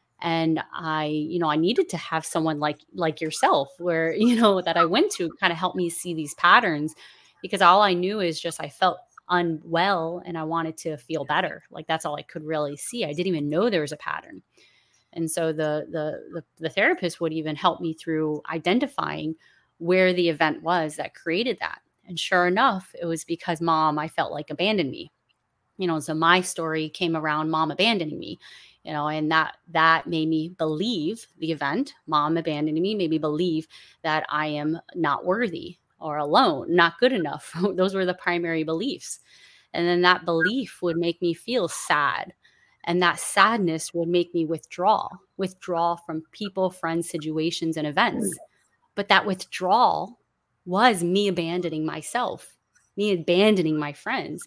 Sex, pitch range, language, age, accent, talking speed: female, 160-180 Hz, English, 30-49, American, 180 wpm